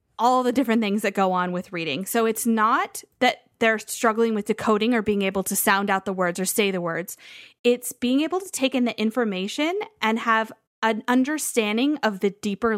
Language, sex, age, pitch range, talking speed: English, female, 20-39, 200-245 Hz, 205 wpm